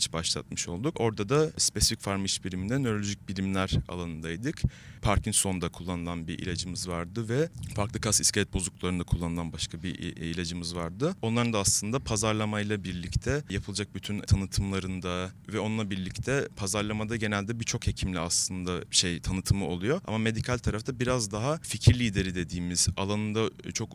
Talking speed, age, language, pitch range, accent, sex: 135 wpm, 30-49, Turkish, 90-110 Hz, native, male